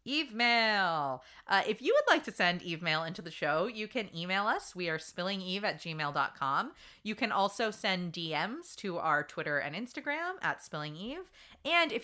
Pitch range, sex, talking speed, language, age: 165-255 Hz, female, 185 wpm, English, 20-39